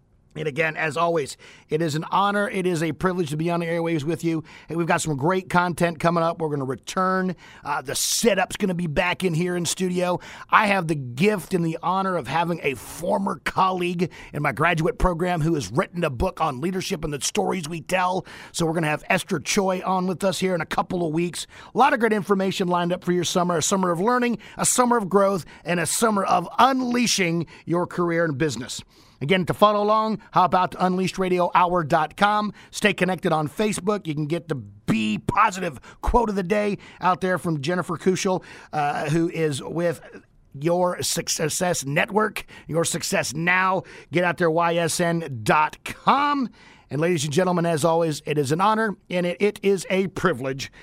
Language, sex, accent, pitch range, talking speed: English, male, American, 165-190 Hz, 200 wpm